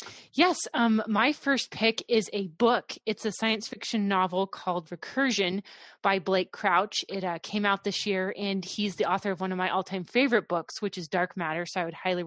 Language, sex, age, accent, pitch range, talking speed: English, female, 20-39, American, 175-205 Hz, 210 wpm